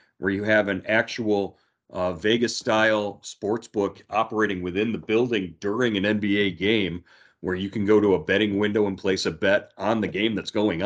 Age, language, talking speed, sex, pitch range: 40-59, English, 190 wpm, male, 100-115 Hz